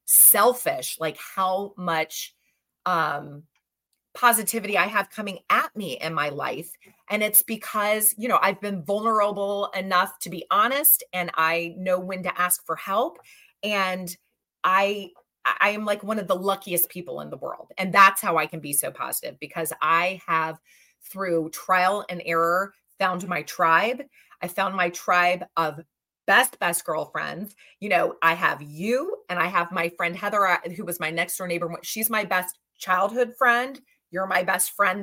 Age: 30-49